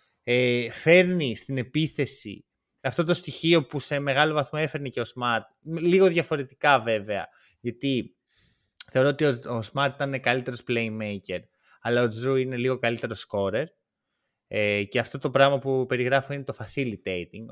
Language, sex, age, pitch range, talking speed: Greek, male, 20-39, 120-165 Hz, 140 wpm